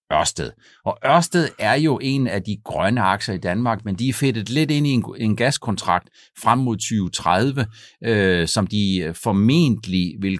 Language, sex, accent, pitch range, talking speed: Danish, male, native, 100-140 Hz, 165 wpm